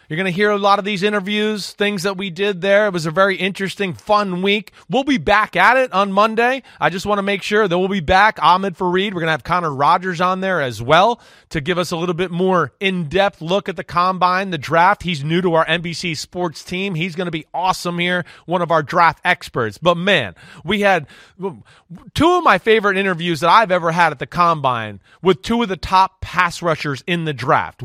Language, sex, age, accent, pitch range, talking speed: English, male, 30-49, American, 165-205 Hz, 235 wpm